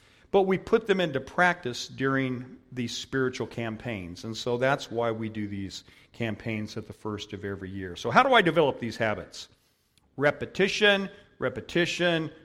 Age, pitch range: 50-69, 110-140 Hz